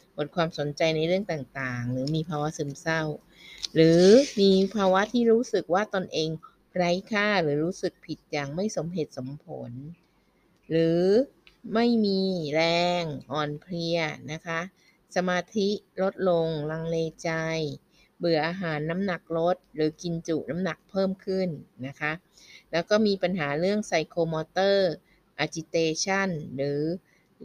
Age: 20-39